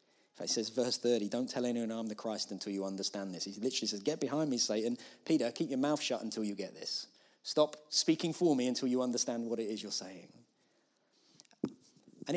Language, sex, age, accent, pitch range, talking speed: English, male, 30-49, British, 120-180 Hz, 210 wpm